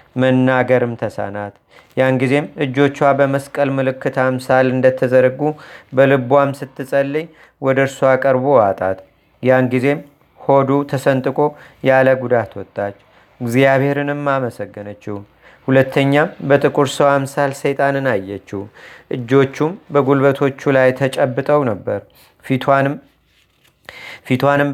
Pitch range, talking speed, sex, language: 130-145 Hz, 80 wpm, male, Amharic